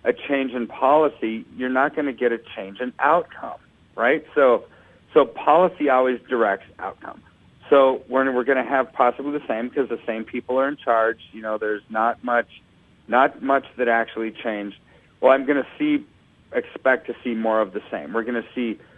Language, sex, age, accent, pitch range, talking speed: English, male, 40-59, American, 115-140 Hz, 195 wpm